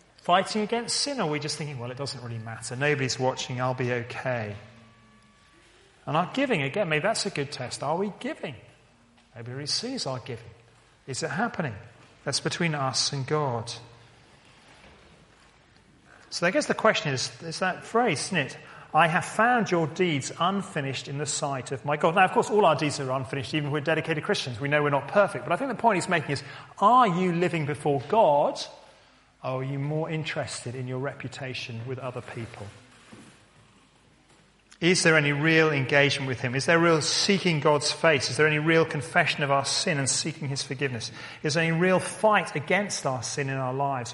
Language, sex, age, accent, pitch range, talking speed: English, male, 40-59, British, 130-165 Hz, 195 wpm